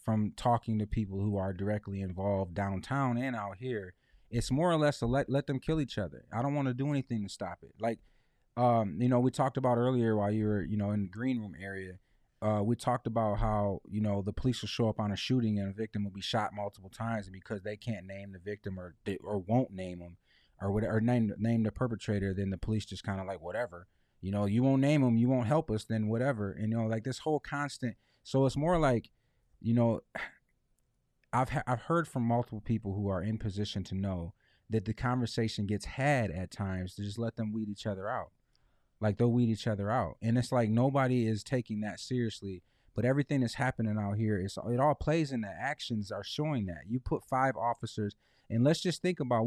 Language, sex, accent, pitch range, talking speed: English, male, American, 100-125 Hz, 235 wpm